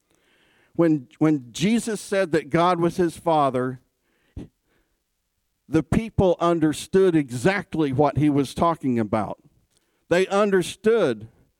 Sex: male